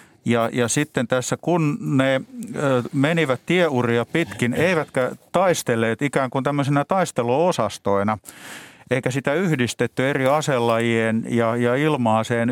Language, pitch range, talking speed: Finnish, 130-160 Hz, 110 wpm